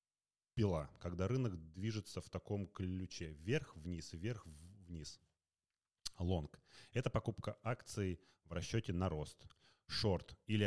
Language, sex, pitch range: Russian, male, 85-110 Hz